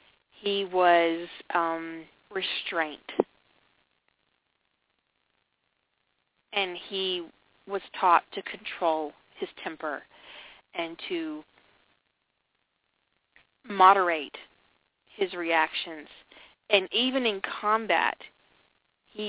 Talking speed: 70 wpm